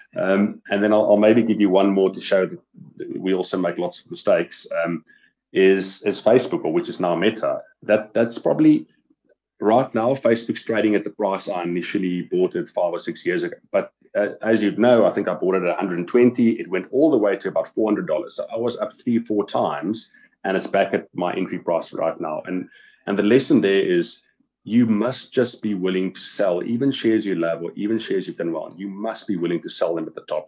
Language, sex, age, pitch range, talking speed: English, male, 30-49, 90-115 Hz, 230 wpm